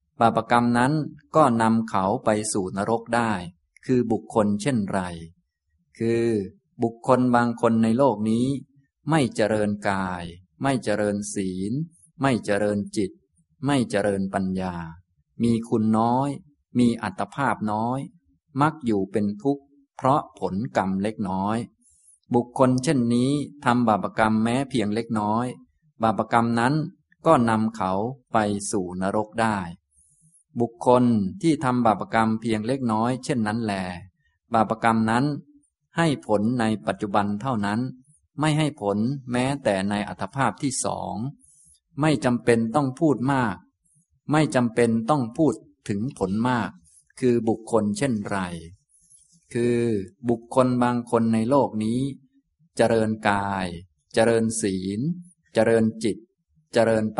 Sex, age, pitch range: male, 20-39, 105-130 Hz